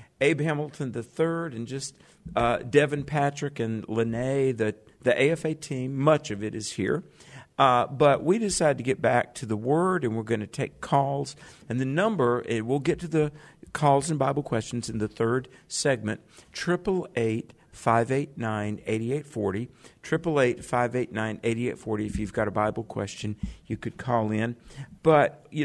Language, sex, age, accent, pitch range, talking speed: English, male, 50-69, American, 115-155 Hz, 150 wpm